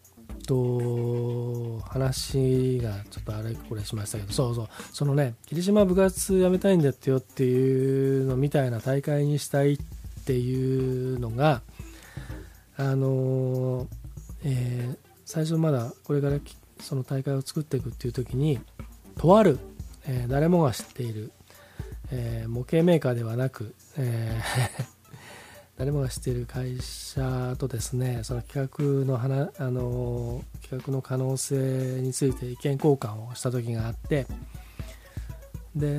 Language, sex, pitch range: Japanese, male, 120-140 Hz